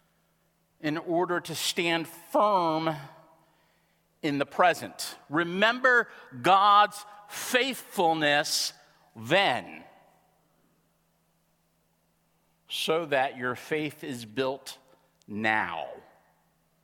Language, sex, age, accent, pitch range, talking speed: English, male, 50-69, American, 125-175 Hz, 70 wpm